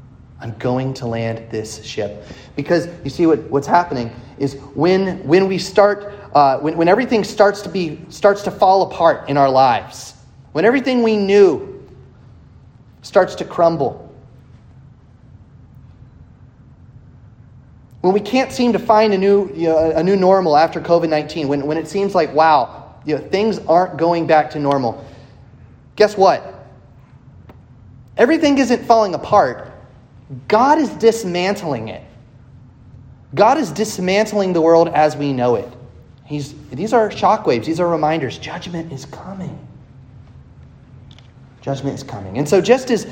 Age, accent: 30-49, American